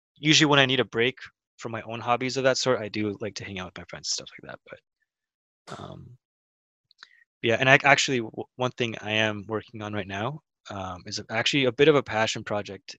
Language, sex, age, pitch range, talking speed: English, male, 20-39, 100-115 Hz, 225 wpm